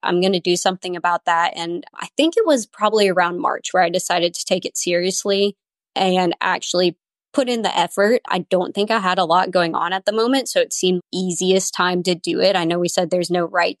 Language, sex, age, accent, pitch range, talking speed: English, female, 20-39, American, 180-205 Hz, 240 wpm